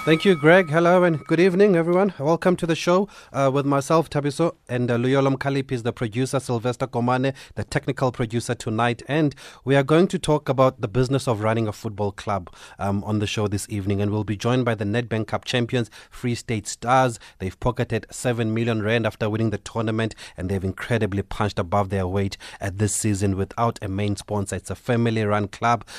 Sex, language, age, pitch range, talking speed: male, English, 30-49, 105-125 Hz, 205 wpm